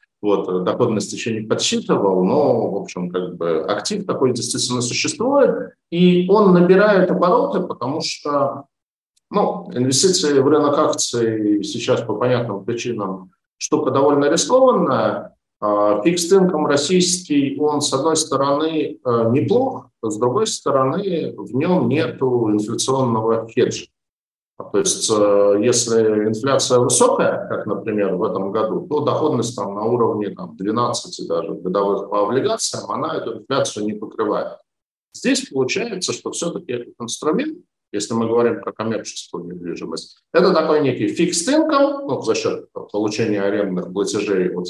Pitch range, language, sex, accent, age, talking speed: 105-175 Hz, Russian, male, native, 50-69, 130 wpm